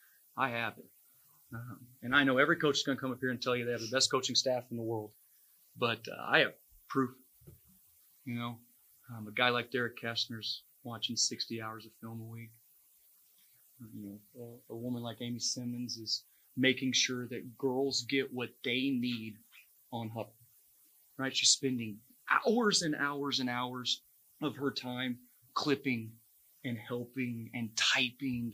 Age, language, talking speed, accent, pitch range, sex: 30-49, English, 175 wpm, American, 115-130 Hz, male